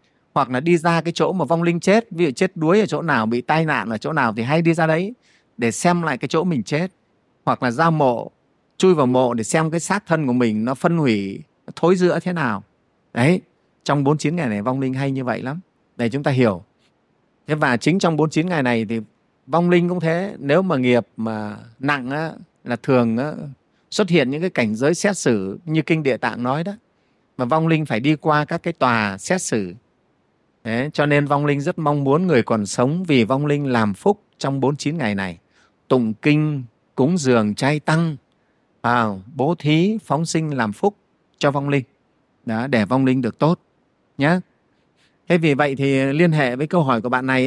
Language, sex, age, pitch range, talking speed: Vietnamese, male, 30-49, 120-165 Hz, 220 wpm